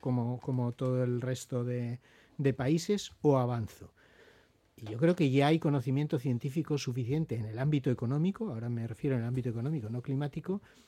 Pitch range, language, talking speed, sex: 120-155 Hz, Spanish, 175 wpm, male